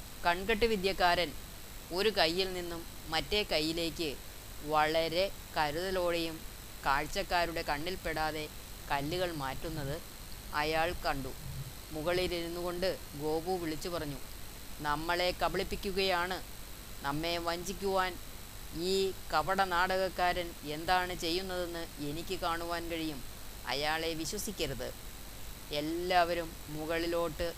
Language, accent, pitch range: Malayalam, native, 135-175 Hz